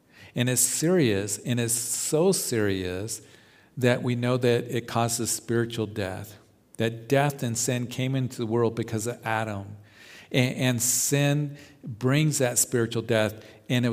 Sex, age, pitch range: male, 50-69, 110-140 Hz